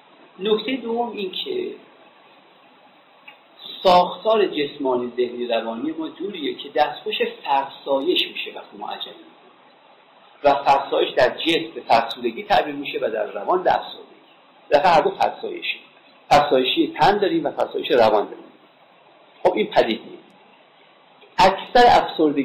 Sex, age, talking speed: male, 50-69, 110 wpm